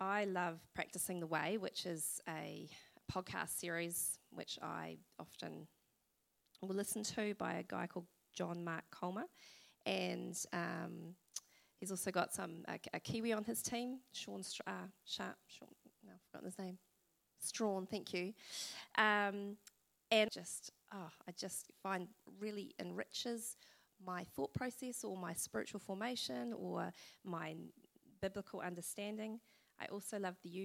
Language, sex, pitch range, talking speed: English, female, 175-215 Hz, 140 wpm